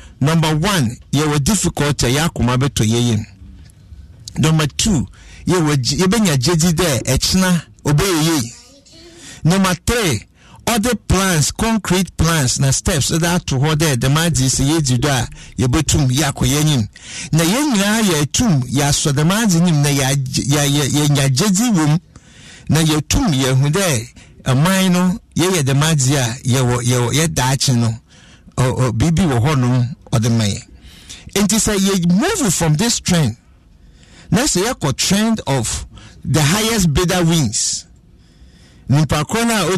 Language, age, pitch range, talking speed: English, 60-79, 130-190 Hz, 155 wpm